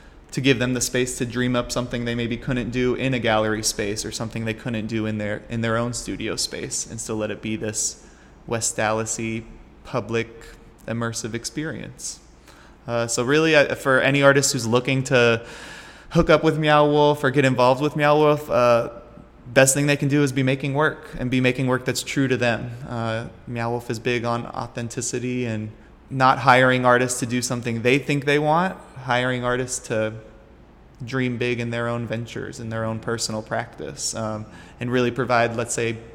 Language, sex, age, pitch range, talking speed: English, male, 20-39, 115-130 Hz, 195 wpm